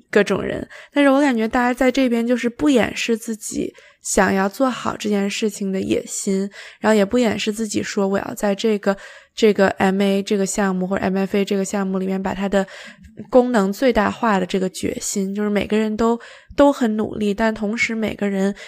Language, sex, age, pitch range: Chinese, female, 20-39, 190-225 Hz